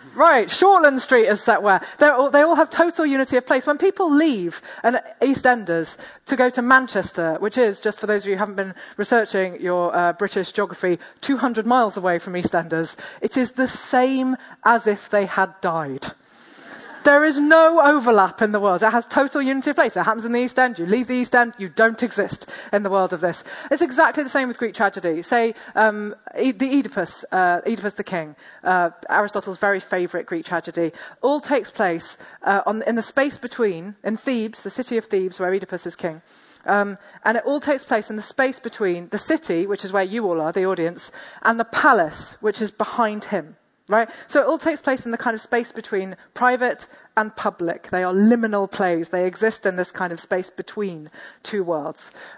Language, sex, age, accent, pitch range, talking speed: English, female, 30-49, British, 190-250 Hz, 200 wpm